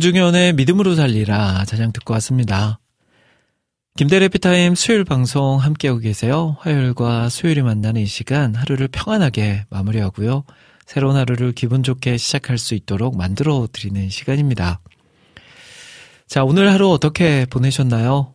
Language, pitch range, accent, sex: Korean, 110-140 Hz, native, male